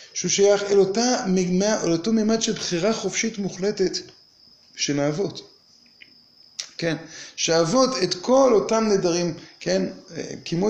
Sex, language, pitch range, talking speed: male, Hebrew, 165-215 Hz, 105 wpm